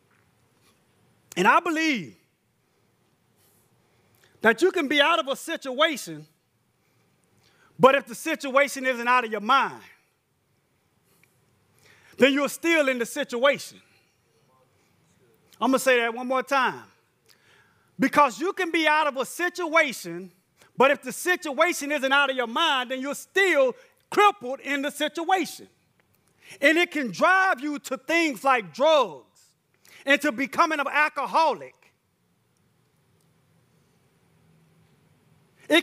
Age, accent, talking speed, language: 30-49, American, 120 wpm, English